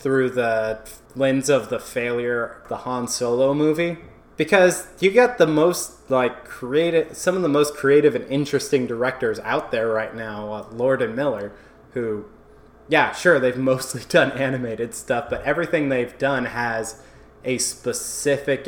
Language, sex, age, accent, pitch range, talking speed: English, male, 20-39, American, 115-135 Hz, 155 wpm